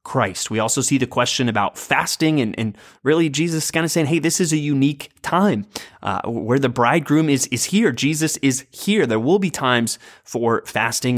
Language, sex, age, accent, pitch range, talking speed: English, male, 20-39, American, 115-145 Hz, 200 wpm